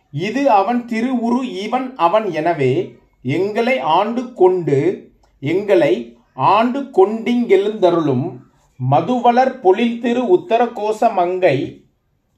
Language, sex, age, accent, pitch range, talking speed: Tamil, male, 40-59, native, 180-245 Hz, 80 wpm